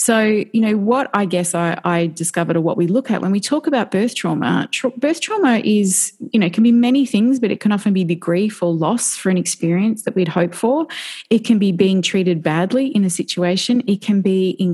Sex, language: female, English